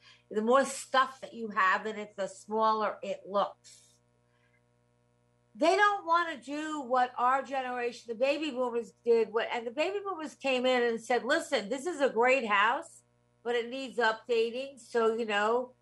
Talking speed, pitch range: 175 wpm, 200-260 Hz